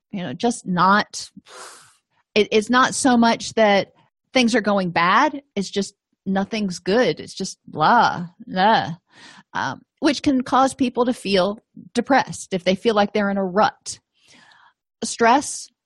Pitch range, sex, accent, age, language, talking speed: 190-235 Hz, female, American, 30-49, English, 145 wpm